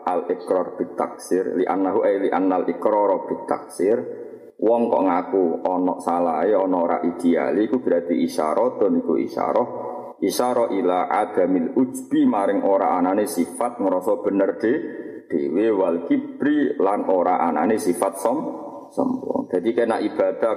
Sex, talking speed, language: male, 150 wpm, Malay